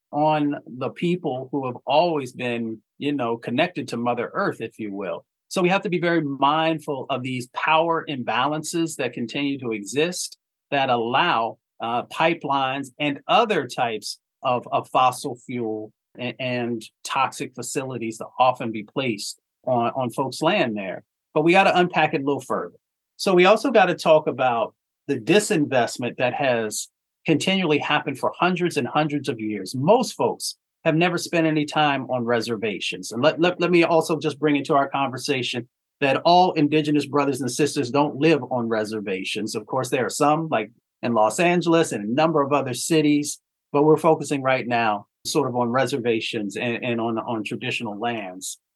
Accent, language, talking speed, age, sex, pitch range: American, English, 175 wpm, 40-59, male, 120-155 Hz